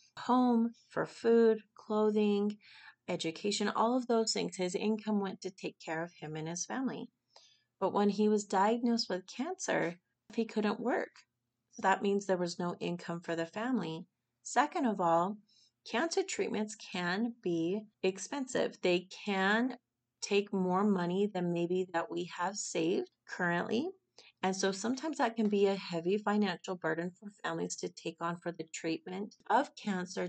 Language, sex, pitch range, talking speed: English, female, 175-220 Hz, 160 wpm